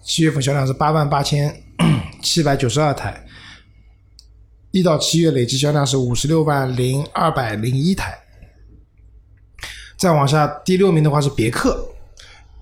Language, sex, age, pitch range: Chinese, male, 20-39, 120-145 Hz